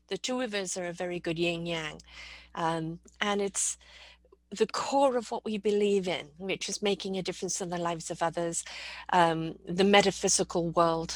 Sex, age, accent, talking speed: female, 50-69, British, 175 wpm